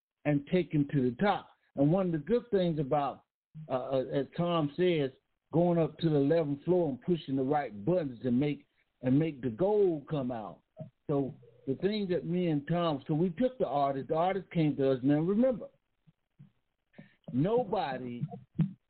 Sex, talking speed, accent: male, 180 wpm, American